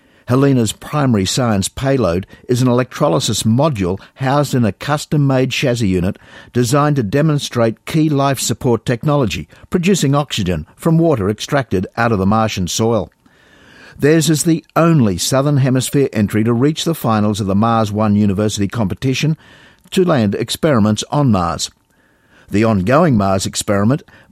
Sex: male